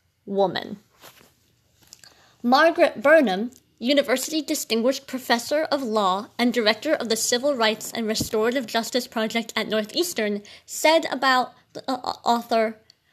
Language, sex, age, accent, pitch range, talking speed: English, female, 20-39, American, 215-270 Hz, 110 wpm